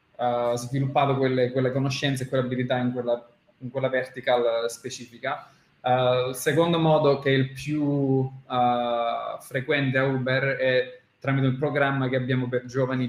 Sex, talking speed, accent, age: male, 140 wpm, native, 20-39